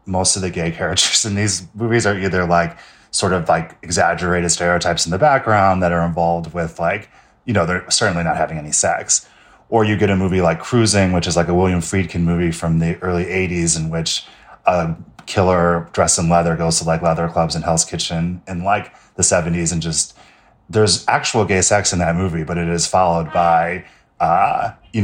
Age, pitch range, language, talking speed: 30-49, 85-105 Hz, English, 205 wpm